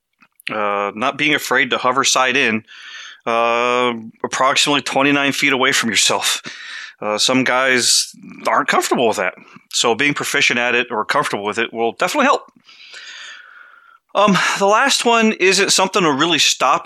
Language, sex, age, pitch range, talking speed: English, male, 30-49, 120-175 Hz, 155 wpm